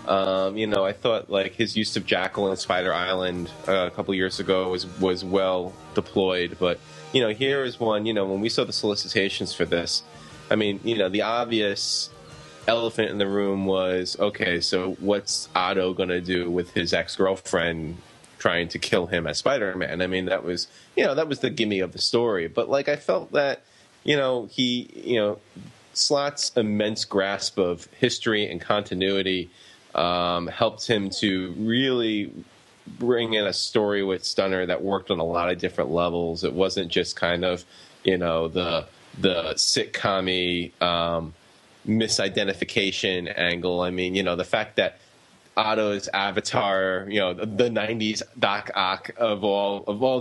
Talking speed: 175 wpm